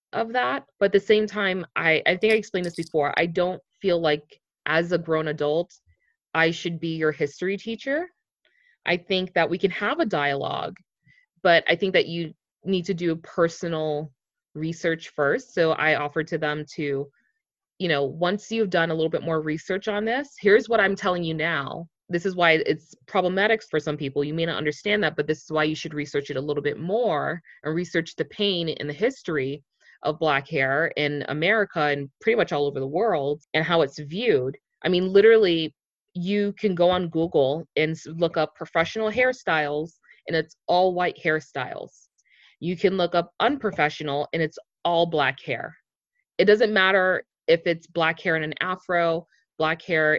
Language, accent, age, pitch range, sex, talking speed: English, American, 20-39, 155-190 Hz, female, 190 wpm